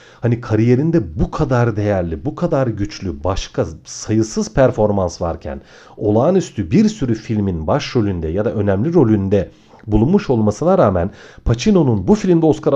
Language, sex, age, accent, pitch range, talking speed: Turkish, male, 40-59, native, 105-155 Hz, 130 wpm